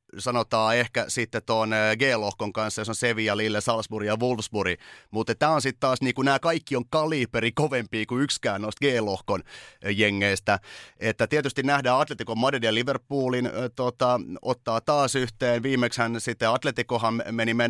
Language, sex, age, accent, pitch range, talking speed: Finnish, male, 30-49, native, 110-135 Hz, 145 wpm